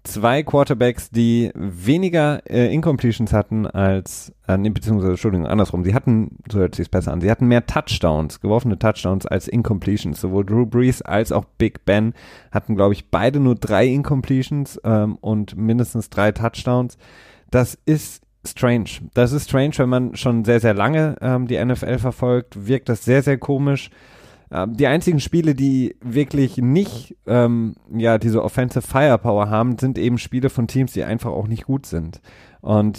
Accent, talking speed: German, 165 wpm